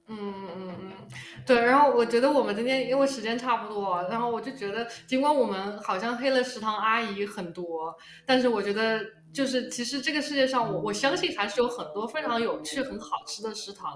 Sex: female